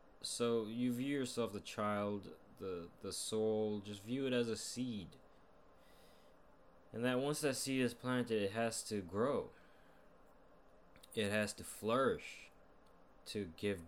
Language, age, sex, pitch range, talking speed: English, 20-39, male, 85-110 Hz, 140 wpm